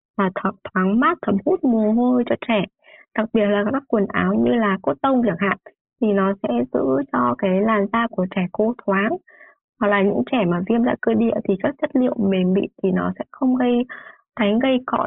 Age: 20-39